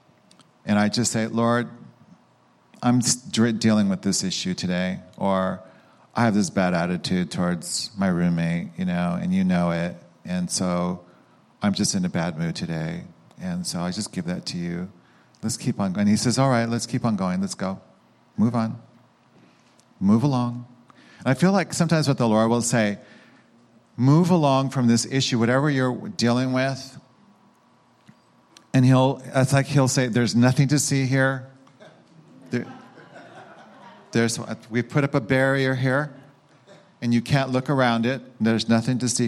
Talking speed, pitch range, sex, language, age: 165 wpm, 110-140 Hz, male, English, 50-69